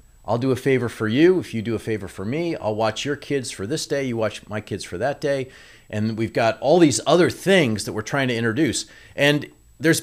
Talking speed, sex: 245 wpm, male